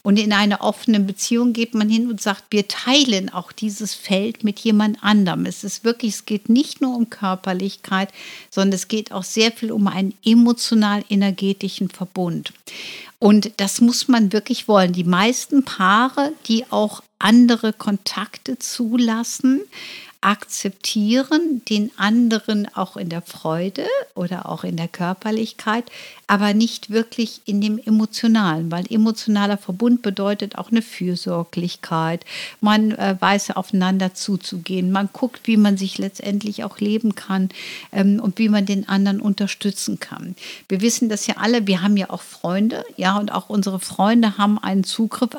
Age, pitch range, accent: 60-79, 195-225 Hz, German